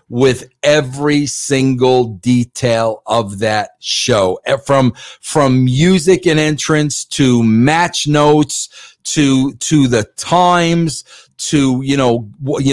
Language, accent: English, American